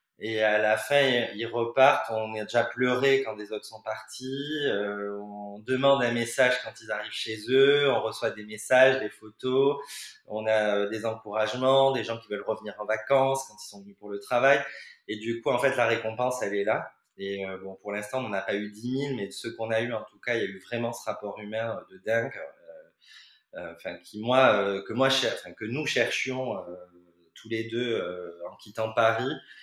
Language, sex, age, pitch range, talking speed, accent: French, male, 20-39, 105-130 Hz, 225 wpm, French